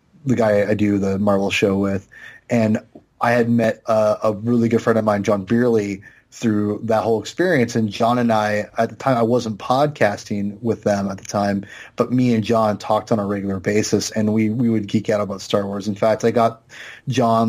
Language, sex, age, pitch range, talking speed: English, male, 30-49, 105-125 Hz, 215 wpm